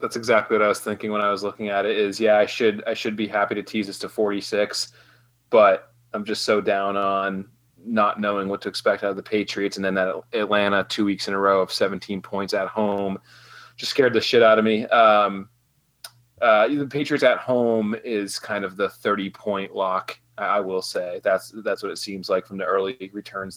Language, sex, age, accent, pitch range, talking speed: English, male, 30-49, American, 95-110 Hz, 220 wpm